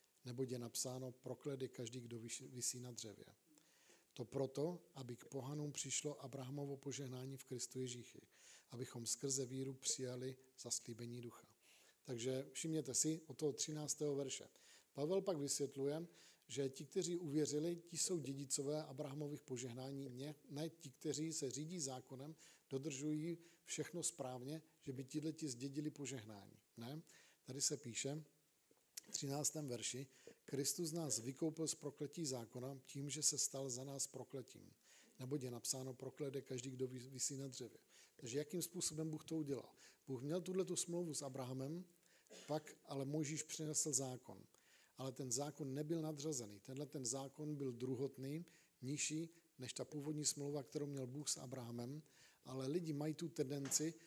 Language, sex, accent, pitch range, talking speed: Czech, male, native, 130-155 Hz, 145 wpm